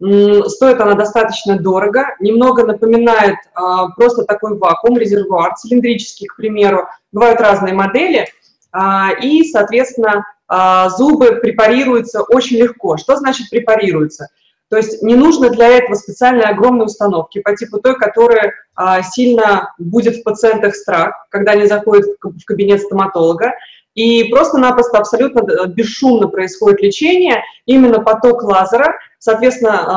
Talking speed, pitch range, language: 125 wpm, 195-240 Hz, Russian